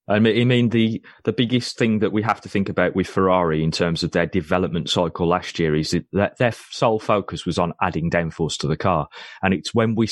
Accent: British